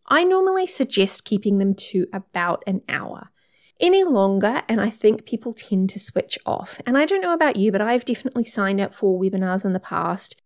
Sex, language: female, English